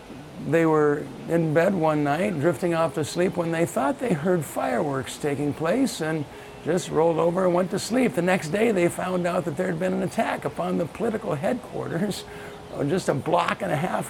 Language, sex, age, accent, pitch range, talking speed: English, male, 60-79, American, 135-175 Hz, 205 wpm